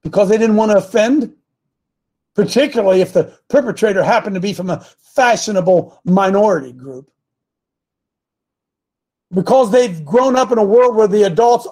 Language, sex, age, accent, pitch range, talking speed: English, male, 50-69, American, 175-235 Hz, 145 wpm